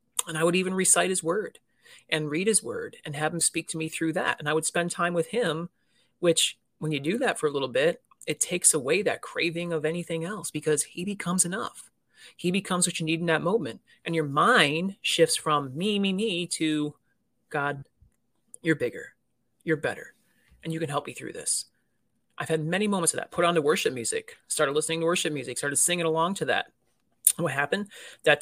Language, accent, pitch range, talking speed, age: English, American, 155-195 Hz, 210 wpm, 30-49